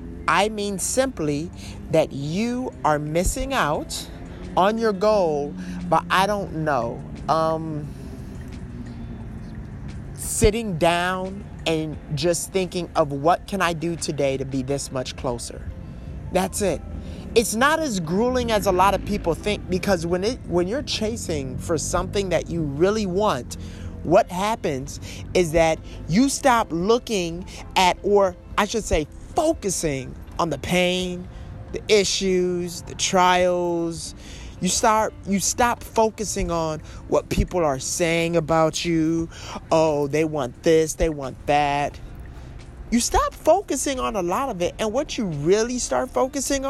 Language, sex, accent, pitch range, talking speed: English, male, American, 145-210 Hz, 140 wpm